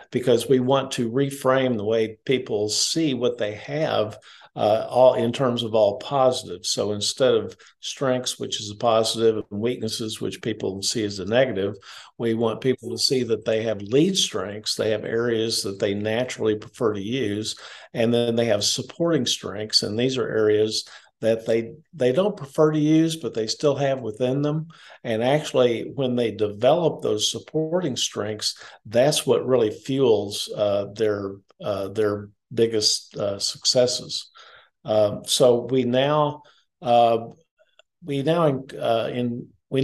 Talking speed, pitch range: 160 wpm, 110-135 Hz